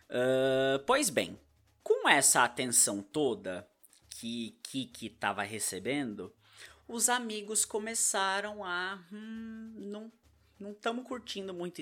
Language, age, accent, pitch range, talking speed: Portuguese, 20-39, Brazilian, 135-210 Hz, 100 wpm